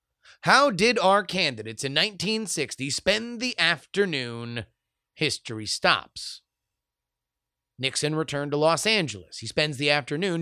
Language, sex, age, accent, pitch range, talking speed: English, male, 30-49, American, 120-170 Hz, 115 wpm